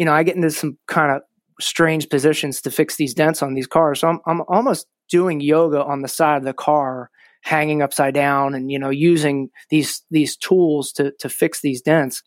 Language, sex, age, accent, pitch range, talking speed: English, male, 30-49, American, 140-165 Hz, 215 wpm